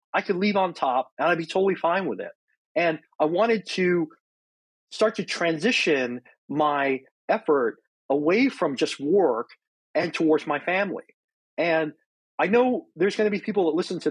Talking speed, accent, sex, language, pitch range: 170 wpm, American, male, English, 155-230 Hz